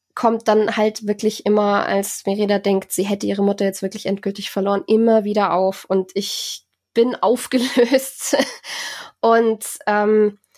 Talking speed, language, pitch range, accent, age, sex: 140 wpm, German, 215-255 Hz, German, 20-39, female